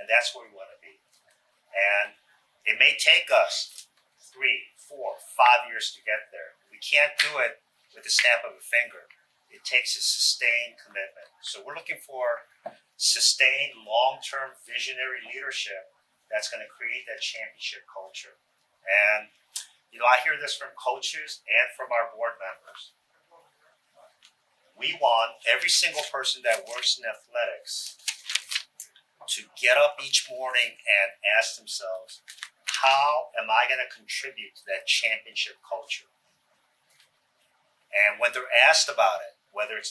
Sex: male